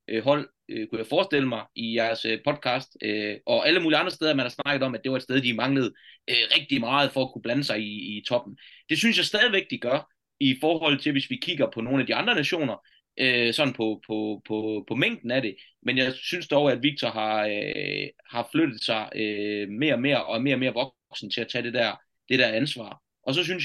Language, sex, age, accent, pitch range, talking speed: Danish, male, 30-49, native, 110-145 Hz, 240 wpm